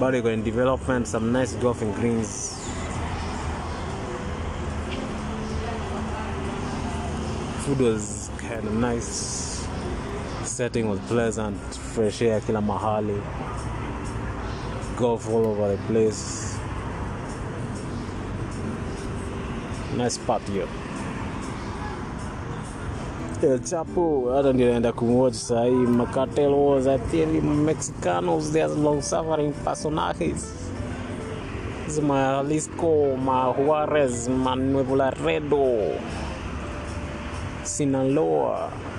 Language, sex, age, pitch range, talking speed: Swahili, male, 20-39, 90-130 Hz, 70 wpm